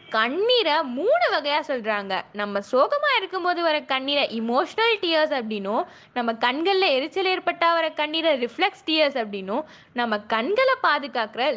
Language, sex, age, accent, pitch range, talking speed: Tamil, female, 20-39, native, 240-345 Hz, 130 wpm